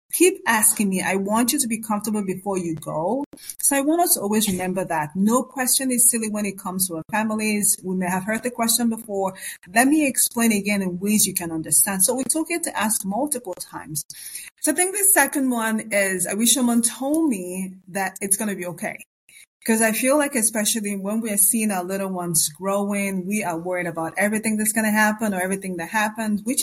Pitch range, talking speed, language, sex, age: 185-245 Hz, 220 wpm, English, female, 30-49